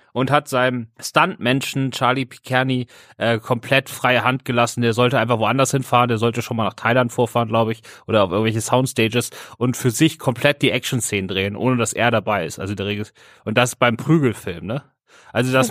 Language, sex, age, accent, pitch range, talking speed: German, male, 30-49, German, 110-130 Hz, 200 wpm